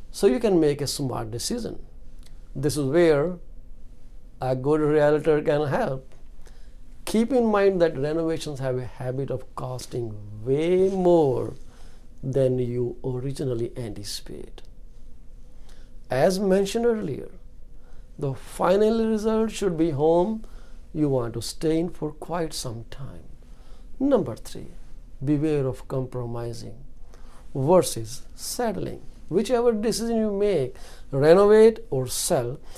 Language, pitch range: English, 125-180 Hz